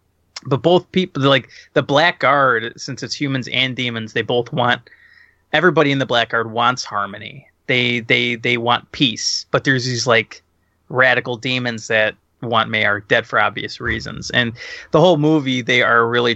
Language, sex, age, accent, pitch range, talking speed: English, male, 20-39, American, 115-145 Hz, 170 wpm